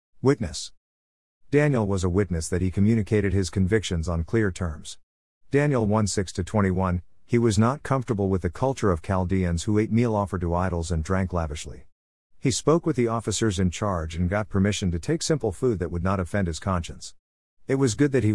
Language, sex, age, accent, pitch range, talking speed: English, male, 50-69, American, 85-115 Hz, 195 wpm